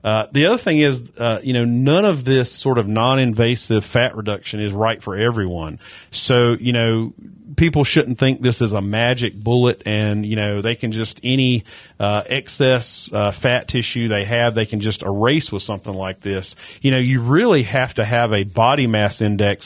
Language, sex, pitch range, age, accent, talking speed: English, male, 105-135 Hz, 40-59, American, 195 wpm